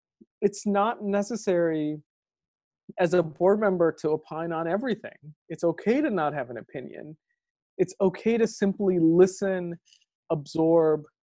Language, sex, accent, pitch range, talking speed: English, male, American, 155-195 Hz, 130 wpm